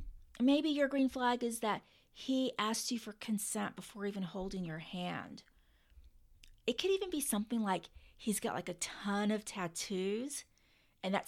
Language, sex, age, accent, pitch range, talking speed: English, female, 30-49, American, 200-275 Hz, 165 wpm